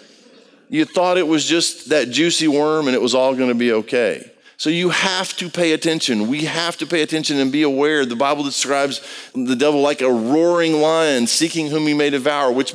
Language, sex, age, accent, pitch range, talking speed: English, male, 50-69, American, 150-205 Hz, 210 wpm